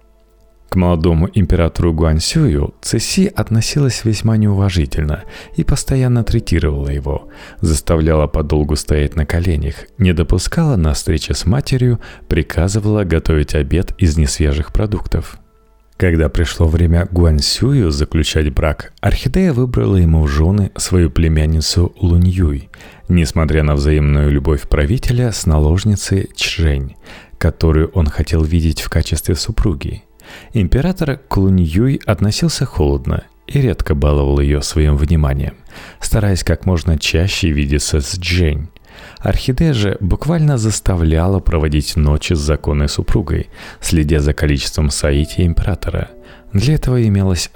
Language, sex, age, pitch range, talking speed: Russian, male, 30-49, 75-105 Hz, 115 wpm